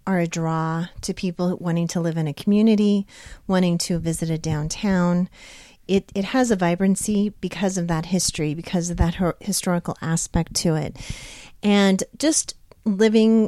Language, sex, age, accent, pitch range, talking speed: English, female, 40-59, American, 165-195 Hz, 160 wpm